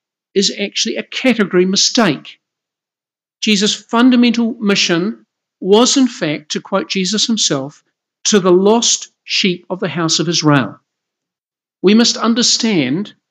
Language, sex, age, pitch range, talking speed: English, male, 50-69, 165-215 Hz, 120 wpm